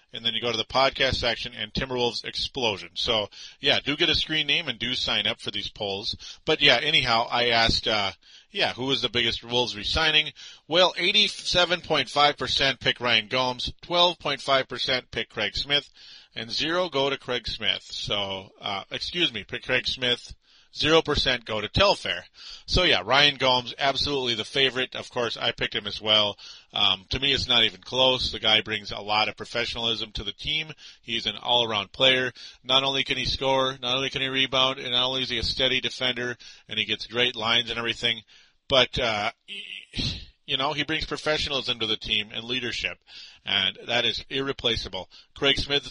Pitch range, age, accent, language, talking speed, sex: 115-135 Hz, 40-59, American, English, 185 wpm, male